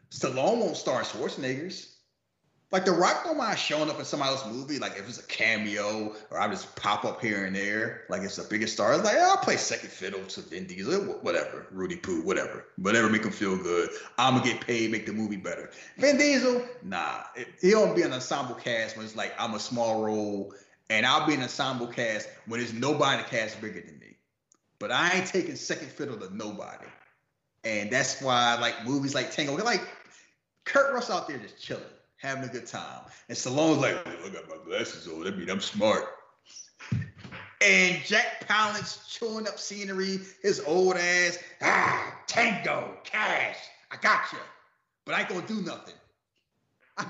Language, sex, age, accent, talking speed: English, male, 30-49, American, 200 wpm